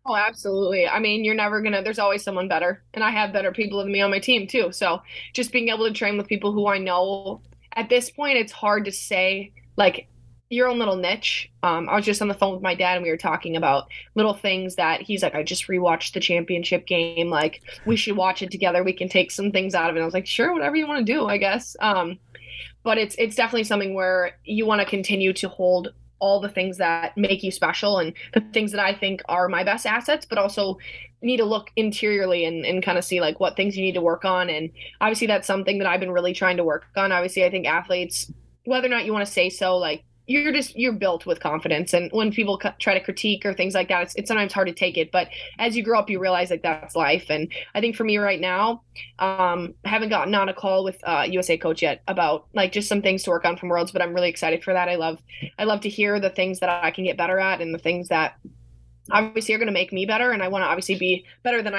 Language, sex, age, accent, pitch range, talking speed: English, female, 20-39, American, 180-210 Hz, 265 wpm